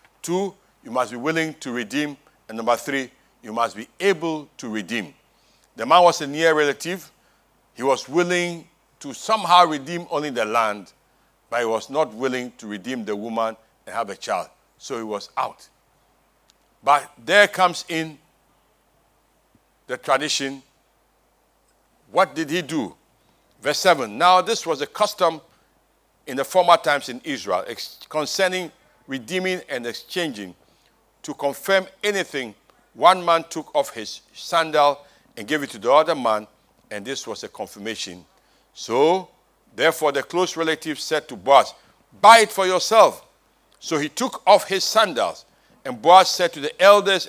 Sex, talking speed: male, 150 wpm